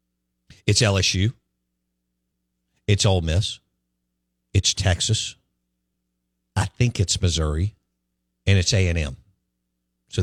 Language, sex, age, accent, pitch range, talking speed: English, male, 50-69, American, 75-115 Hz, 90 wpm